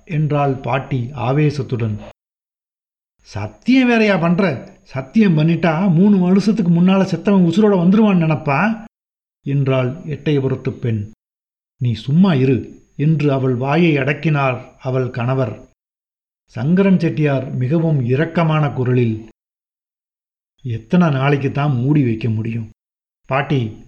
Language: Tamil